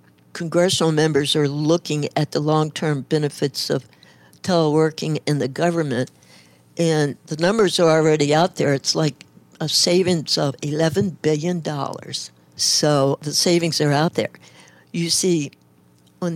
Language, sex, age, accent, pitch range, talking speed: English, female, 60-79, American, 140-170 Hz, 135 wpm